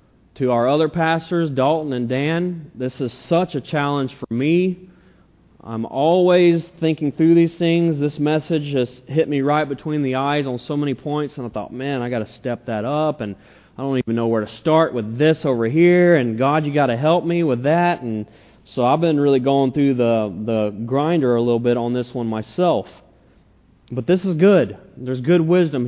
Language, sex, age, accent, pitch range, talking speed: English, male, 30-49, American, 120-155 Hz, 205 wpm